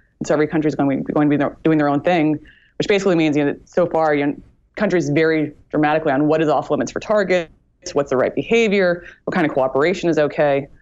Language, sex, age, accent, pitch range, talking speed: English, female, 20-39, American, 145-170 Hz, 220 wpm